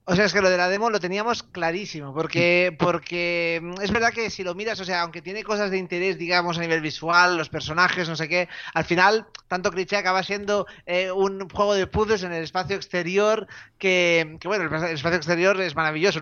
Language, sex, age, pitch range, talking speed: Spanish, male, 30-49, 165-195 Hz, 215 wpm